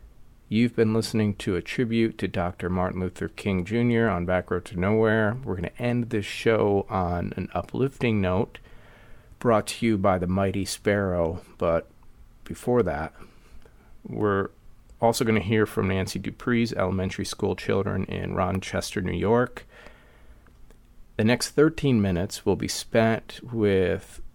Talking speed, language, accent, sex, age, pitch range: 150 wpm, English, American, male, 40-59, 90-110 Hz